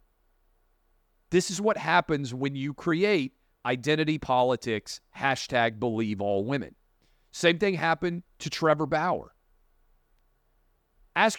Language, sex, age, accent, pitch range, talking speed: English, male, 40-59, American, 120-165 Hz, 105 wpm